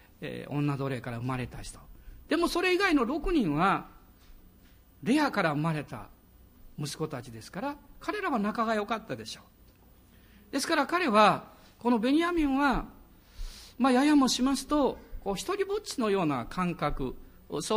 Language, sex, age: Japanese, male, 50-69